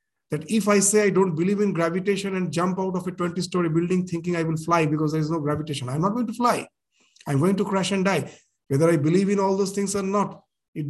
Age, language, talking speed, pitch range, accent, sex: 50-69, English, 255 wpm, 155-195 Hz, Indian, male